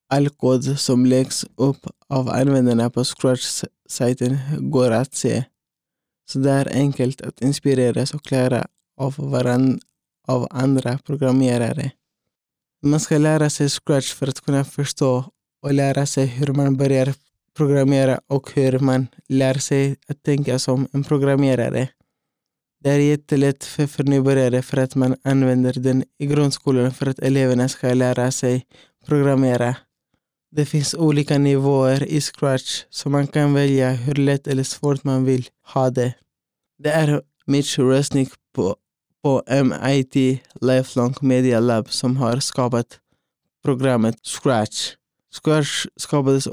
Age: 20-39